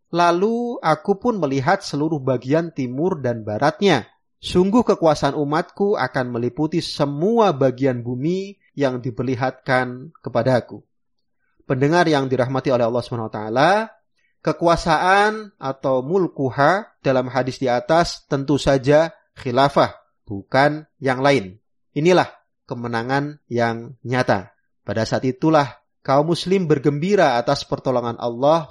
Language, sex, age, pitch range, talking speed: Indonesian, male, 30-49, 125-160 Hz, 115 wpm